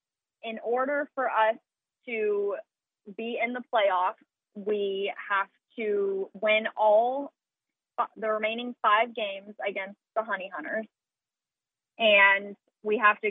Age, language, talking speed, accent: 20-39, English, 120 wpm, American